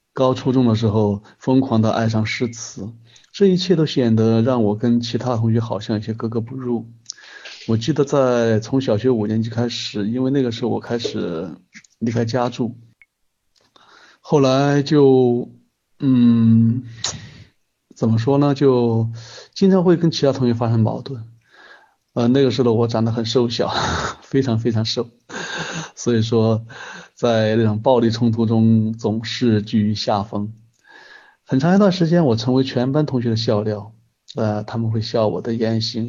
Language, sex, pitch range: Chinese, male, 110-130 Hz